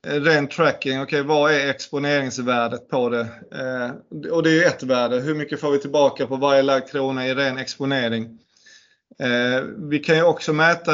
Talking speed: 185 wpm